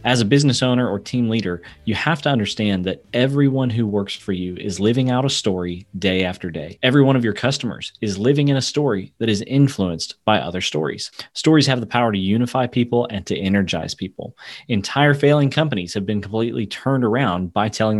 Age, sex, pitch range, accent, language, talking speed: 30-49, male, 100-130 Hz, American, English, 205 wpm